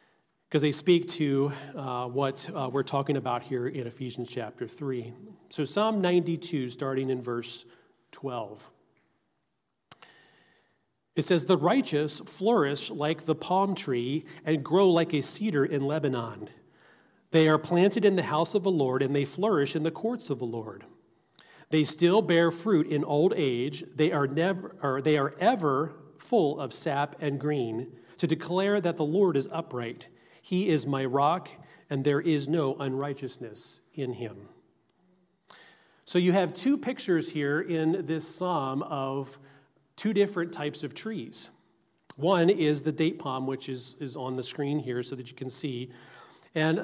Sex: male